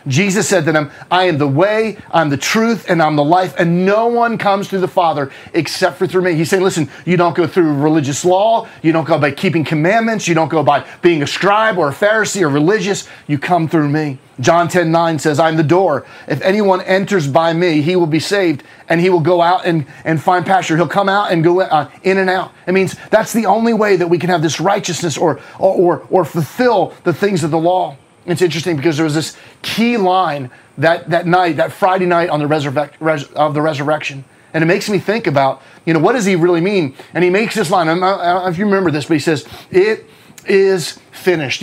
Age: 30-49